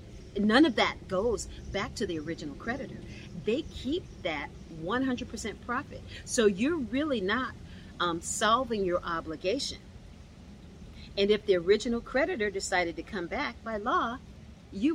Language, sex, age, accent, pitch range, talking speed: English, female, 40-59, American, 175-255 Hz, 135 wpm